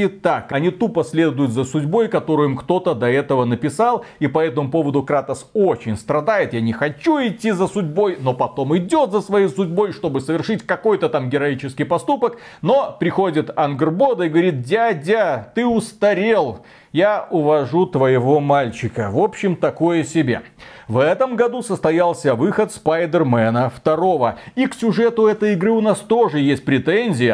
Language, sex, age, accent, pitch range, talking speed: Russian, male, 30-49, native, 145-200 Hz, 155 wpm